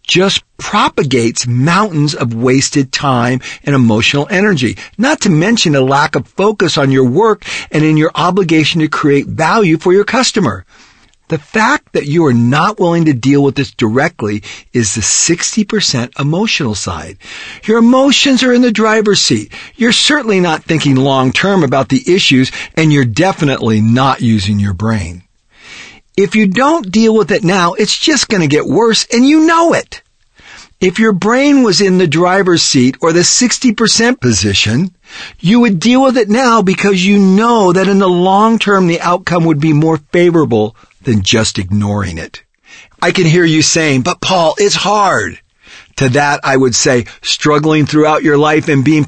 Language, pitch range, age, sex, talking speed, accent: English, 135-200 Hz, 50-69, male, 170 wpm, American